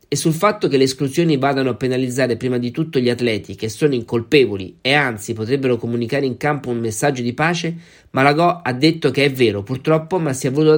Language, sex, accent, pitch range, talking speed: Italian, male, native, 125-160 Hz, 210 wpm